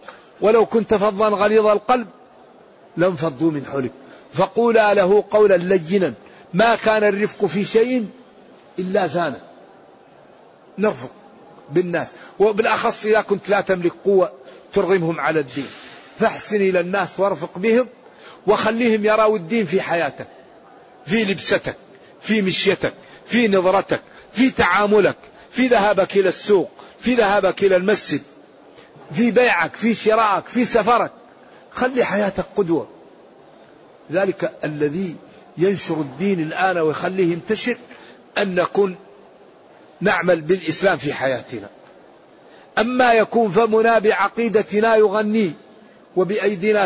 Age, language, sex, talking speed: 50-69, Arabic, male, 110 wpm